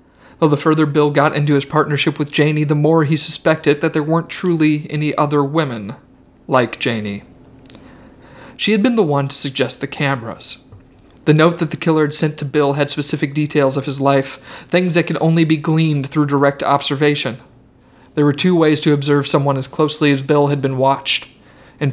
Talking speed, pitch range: 190 wpm, 140-155 Hz